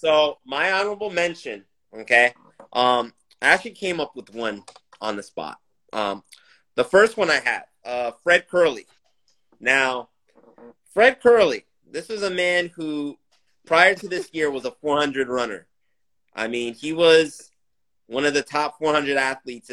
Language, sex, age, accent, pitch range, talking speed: English, male, 30-49, American, 125-175 Hz, 145 wpm